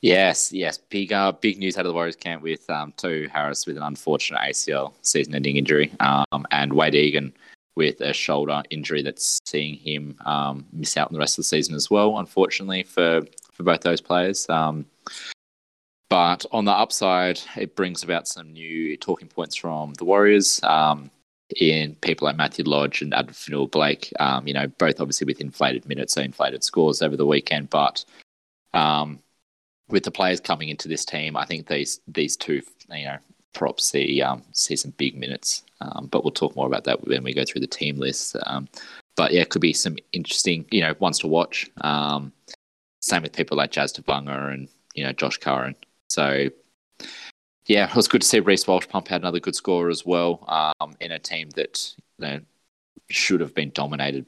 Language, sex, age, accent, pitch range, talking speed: English, male, 20-39, Australian, 70-80 Hz, 195 wpm